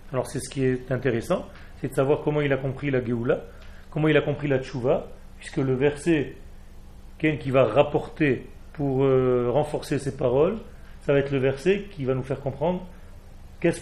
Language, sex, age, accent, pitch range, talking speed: French, male, 40-59, French, 130-160 Hz, 190 wpm